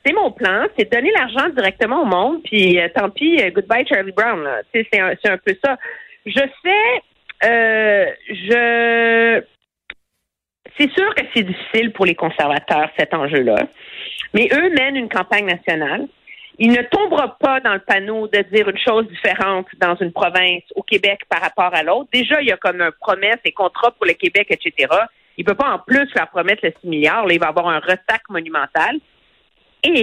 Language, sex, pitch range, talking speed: French, female, 190-280 Hz, 195 wpm